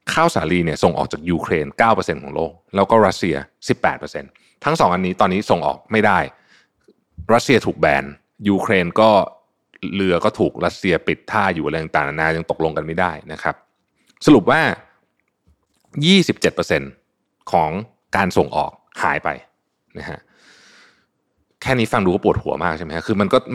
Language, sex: Thai, male